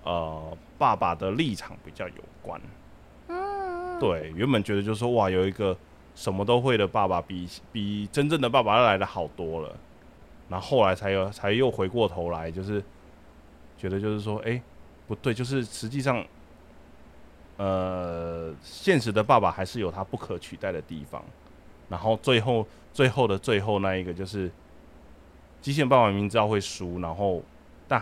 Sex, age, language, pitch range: male, 20-39, Chinese, 75-110 Hz